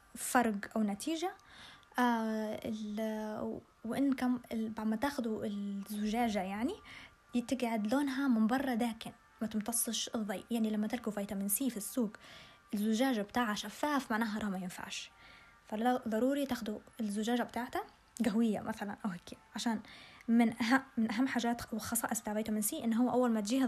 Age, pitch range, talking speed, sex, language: 20-39, 215-255 Hz, 135 wpm, female, Arabic